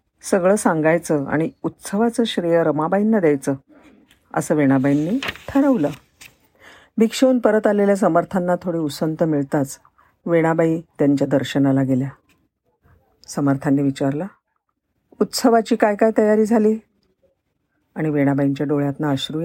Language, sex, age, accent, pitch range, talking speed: Marathi, female, 50-69, native, 145-220 Hz, 100 wpm